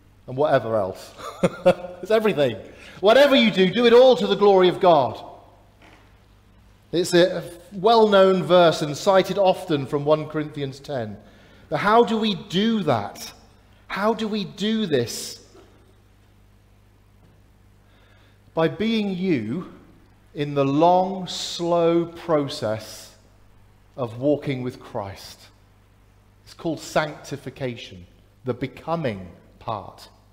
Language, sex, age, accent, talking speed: English, male, 40-59, British, 115 wpm